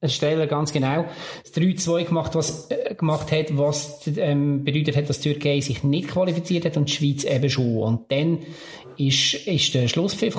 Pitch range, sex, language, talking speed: 145-160 Hz, male, German, 180 wpm